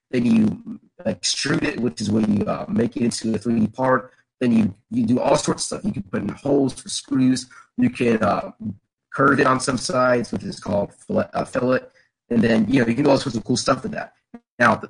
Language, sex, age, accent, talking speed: English, male, 30-49, American, 240 wpm